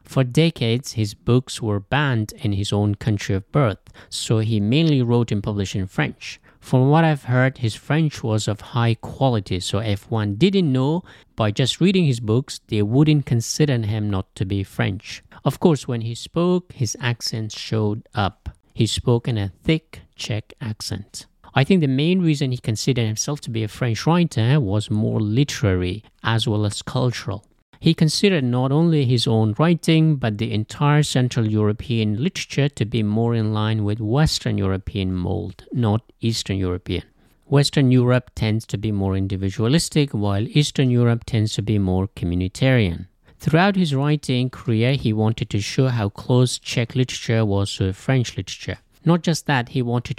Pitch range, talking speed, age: 105-135 Hz, 175 wpm, 50-69